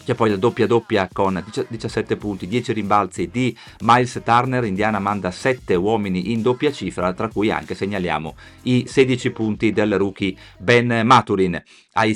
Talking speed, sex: 160 wpm, male